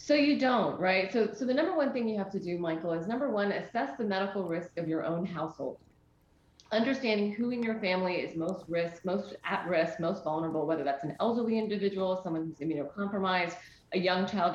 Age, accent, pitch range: 30-49, American, 170-230 Hz